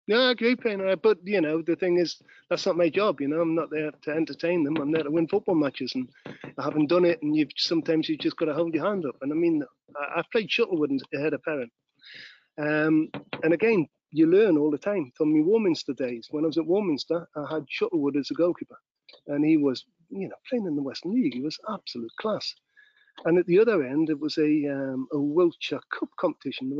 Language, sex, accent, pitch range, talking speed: English, male, British, 150-215 Hz, 235 wpm